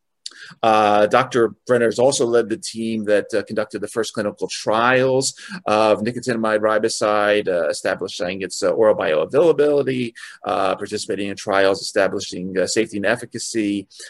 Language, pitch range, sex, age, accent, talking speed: English, 100-120 Hz, male, 30-49, American, 140 wpm